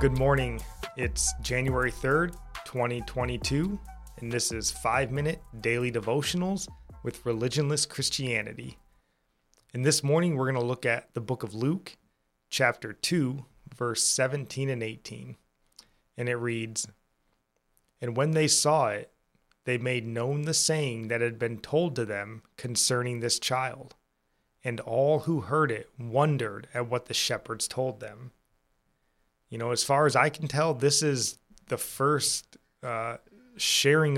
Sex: male